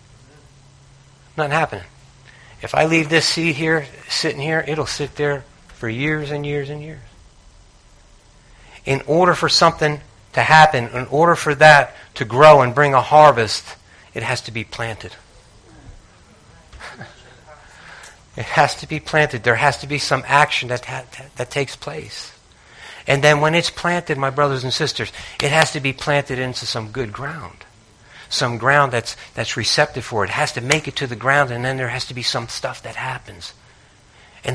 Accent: American